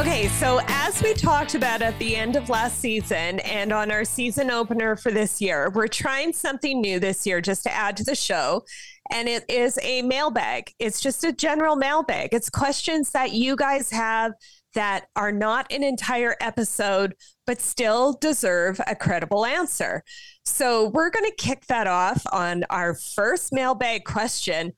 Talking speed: 175 wpm